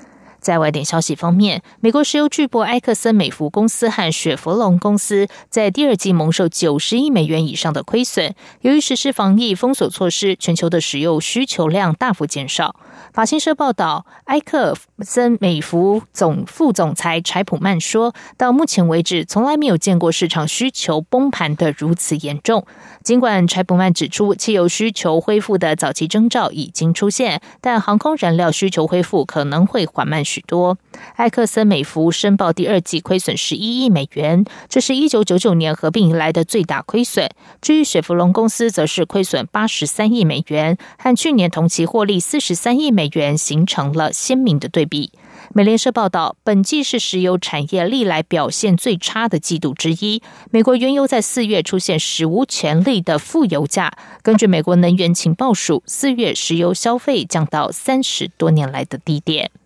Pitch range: 165-230 Hz